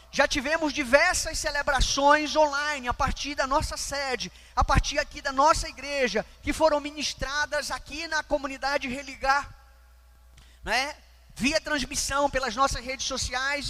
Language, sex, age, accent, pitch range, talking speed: Portuguese, male, 20-39, Brazilian, 275-315 Hz, 130 wpm